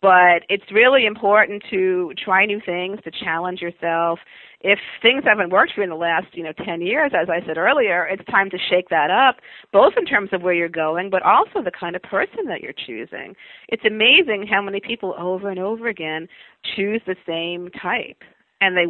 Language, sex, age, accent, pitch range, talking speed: English, female, 40-59, American, 170-215 Hz, 205 wpm